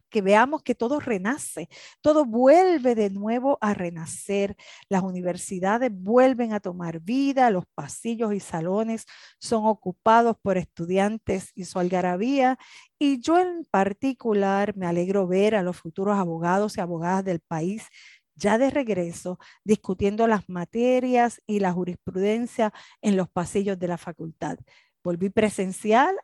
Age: 40-59